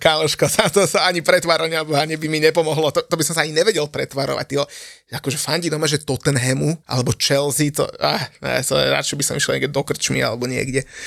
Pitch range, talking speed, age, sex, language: 145-175 Hz, 205 wpm, 30-49, male, Slovak